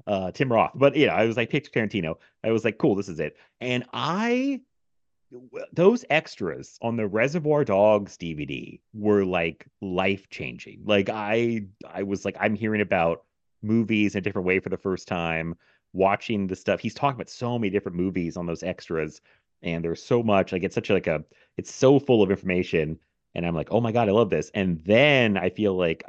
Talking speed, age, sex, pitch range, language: 205 wpm, 30-49, male, 90-125 Hz, English